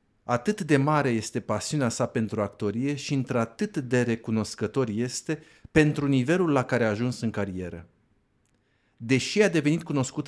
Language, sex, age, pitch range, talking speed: Romanian, male, 50-69, 110-145 Hz, 145 wpm